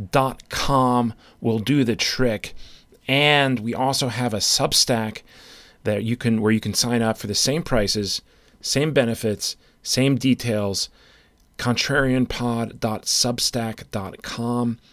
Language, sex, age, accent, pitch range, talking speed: English, male, 40-59, American, 110-130 Hz, 115 wpm